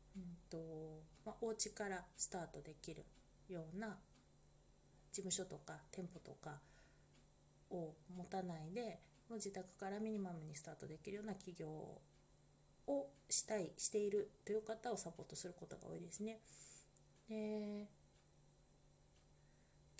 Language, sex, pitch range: Japanese, female, 165-210 Hz